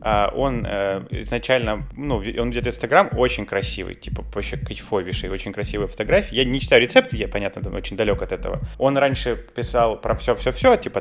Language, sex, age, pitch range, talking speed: Russian, male, 20-39, 105-130 Hz, 180 wpm